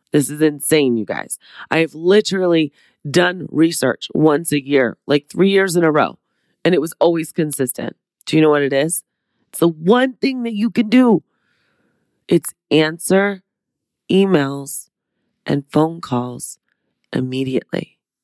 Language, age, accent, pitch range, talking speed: English, 30-49, American, 140-180 Hz, 150 wpm